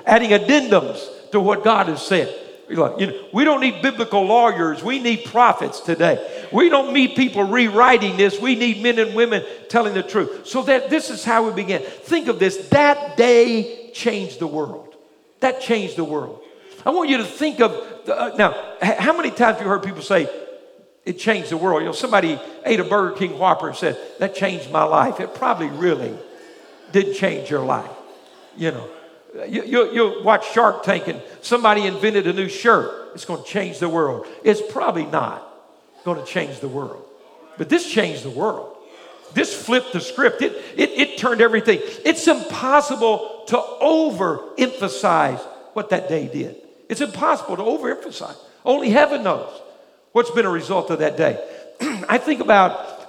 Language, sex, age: English, male, 50-69